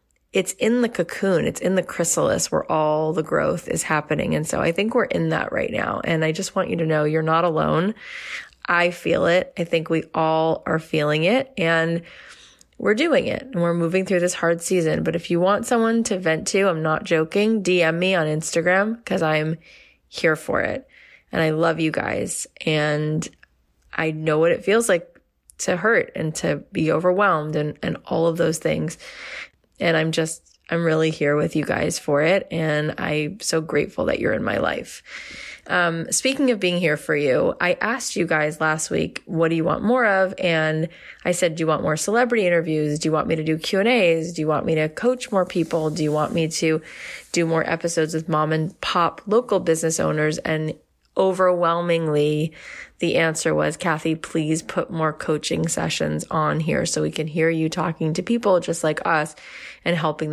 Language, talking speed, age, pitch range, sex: English, 200 wpm, 20-39, 155-180 Hz, female